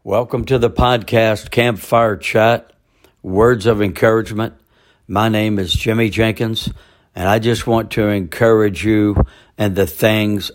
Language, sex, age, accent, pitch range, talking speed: English, male, 60-79, American, 100-115 Hz, 135 wpm